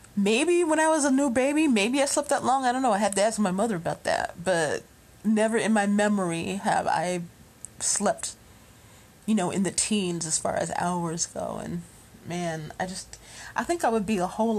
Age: 30-49